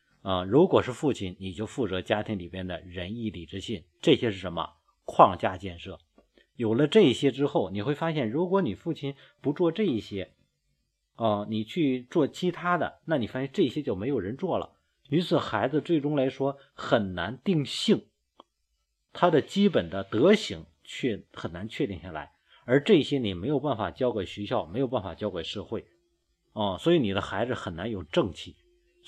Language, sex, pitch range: Chinese, male, 95-135 Hz